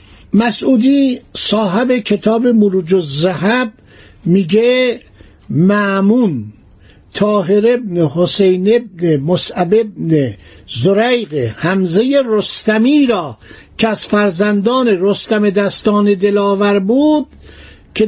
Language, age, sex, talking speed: Persian, 60-79, male, 85 wpm